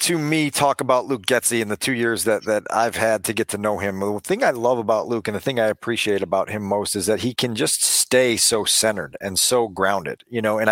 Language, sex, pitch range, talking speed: English, male, 115-145 Hz, 265 wpm